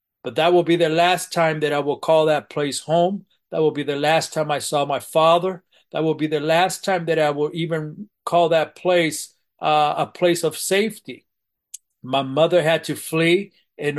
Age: 40-59